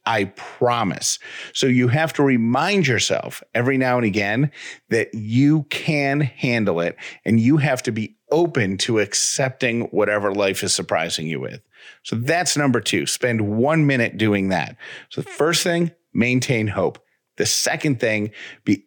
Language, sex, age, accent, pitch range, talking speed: English, male, 40-59, American, 110-155 Hz, 160 wpm